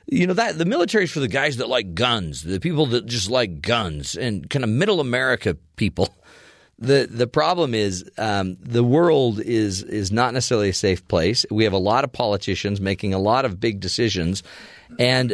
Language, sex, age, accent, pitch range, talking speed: English, male, 40-59, American, 105-140 Hz, 200 wpm